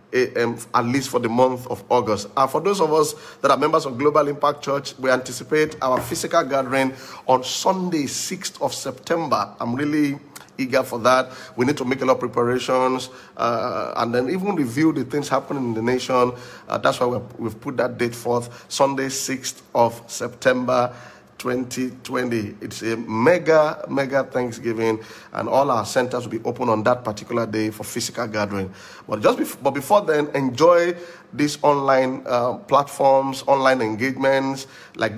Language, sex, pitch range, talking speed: English, male, 115-135 Hz, 170 wpm